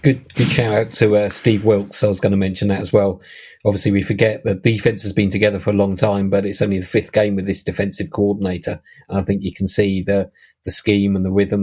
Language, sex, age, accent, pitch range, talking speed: English, male, 40-59, British, 95-110 Hz, 260 wpm